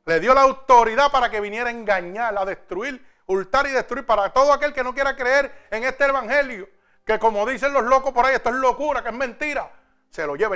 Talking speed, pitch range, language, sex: 235 wpm, 190-250 Hz, Spanish, male